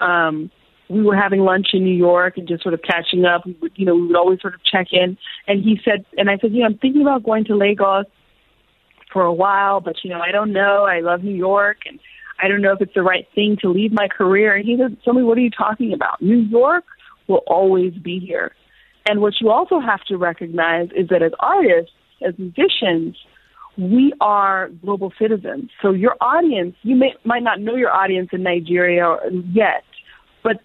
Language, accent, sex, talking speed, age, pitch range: English, American, female, 215 wpm, 30-49, 180-215 Hz